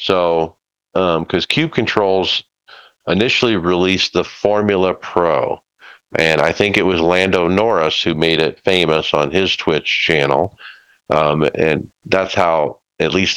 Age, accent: 50-69, American